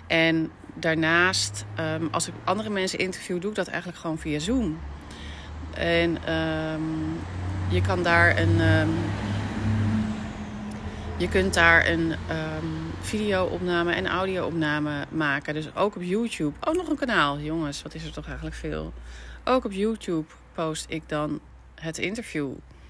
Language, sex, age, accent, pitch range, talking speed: Dutch, female, 30-49, Dutch, 110-170 Hz, 140 wpm